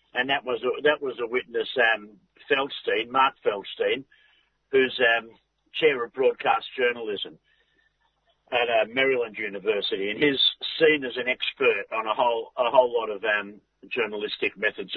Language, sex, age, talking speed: English, male, 50-69, 150 wpm